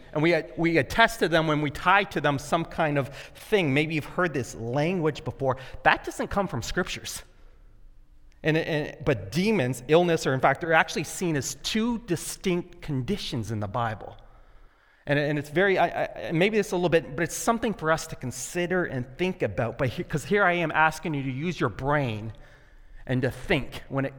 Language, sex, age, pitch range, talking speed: English, male, 30-49, 120-165 Hz, 200 wpm